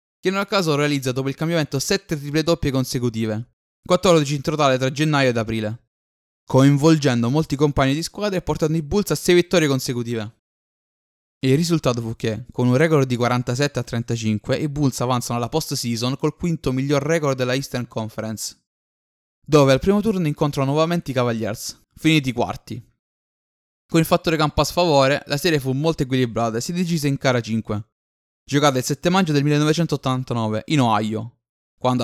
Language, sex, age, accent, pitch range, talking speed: Italian, male, 20-39, native, 120-155 Hz, 175 wpm